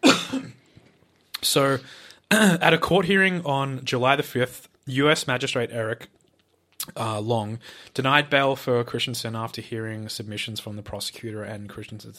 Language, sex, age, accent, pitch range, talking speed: English, male, 20-39, Australian, 105-130 Hz, 130 wpm